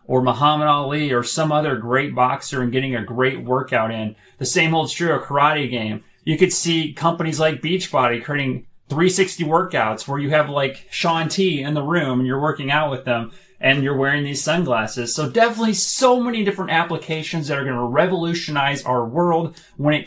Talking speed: 195 wpm